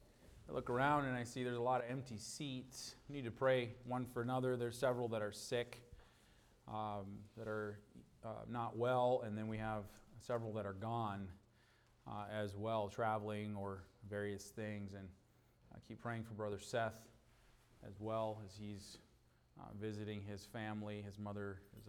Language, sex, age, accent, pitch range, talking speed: English, male, 30-49, American, 100-115 Hz, 175 wpm